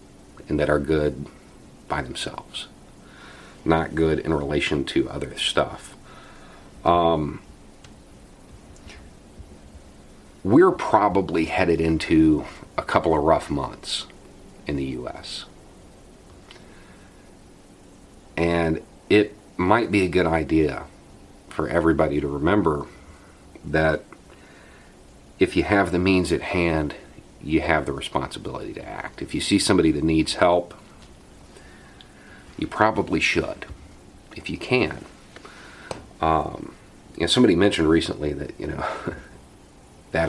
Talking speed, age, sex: 105 wpm, 40-59, male